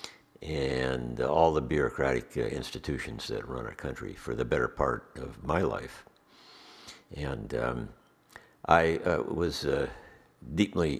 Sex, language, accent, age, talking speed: male, English, American, 60-79, 130 wpm